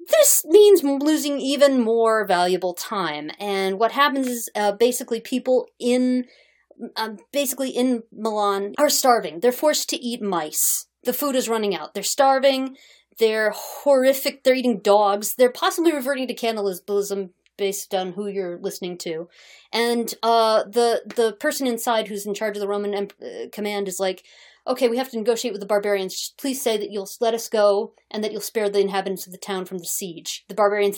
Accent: American